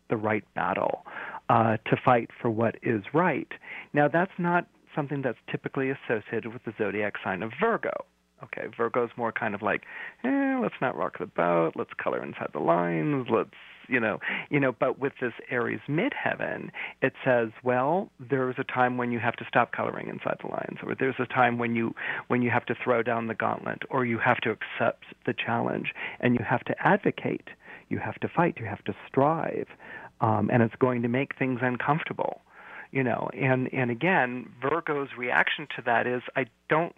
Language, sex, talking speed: English, male, 195 wpm